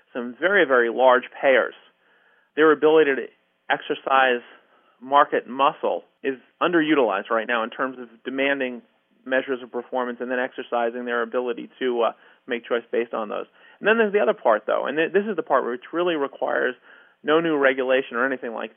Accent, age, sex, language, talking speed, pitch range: American, 40-59, male, English, 175 wpm, 125-155 Hz